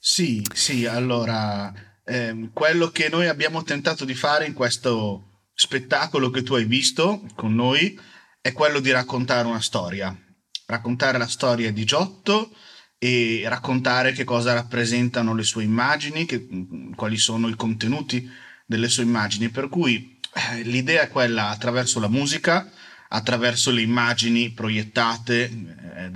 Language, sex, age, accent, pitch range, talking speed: Italian, male, 30-49, native, 115-135 Hz, 140 wpm